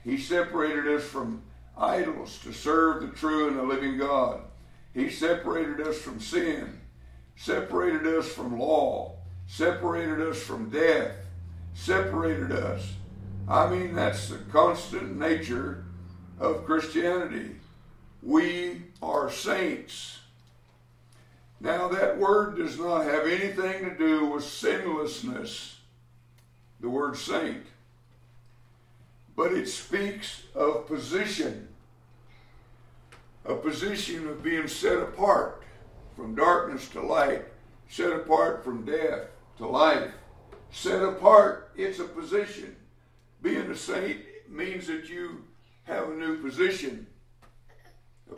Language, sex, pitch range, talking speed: English, male, 115-170 Hz, 110 wpm